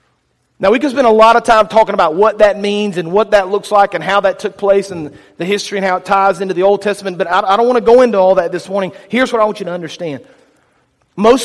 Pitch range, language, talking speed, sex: 180-225 Hz, English, 280 wpm, male